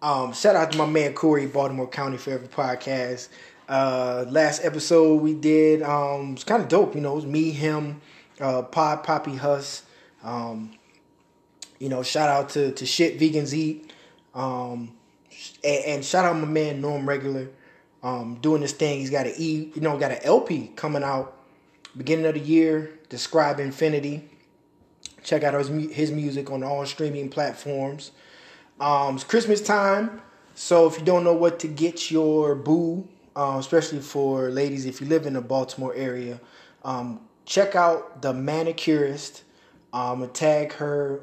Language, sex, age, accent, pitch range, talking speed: English, male, 20-39, American, 130-155 Hz, 170 wpm